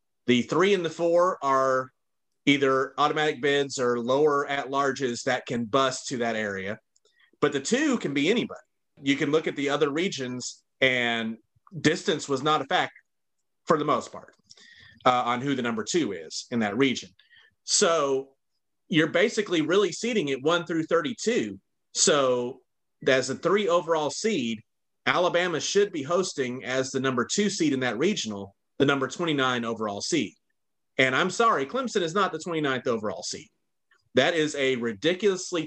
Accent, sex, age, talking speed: American, male, 30-49, 165 wpm